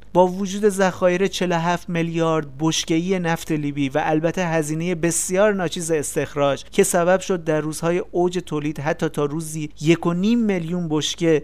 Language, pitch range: Persian, 145-175 Hz